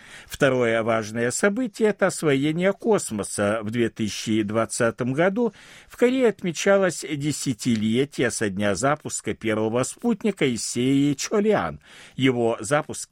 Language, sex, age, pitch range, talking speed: Russian, male, 60-79, 110-185 Hz, 105 wpm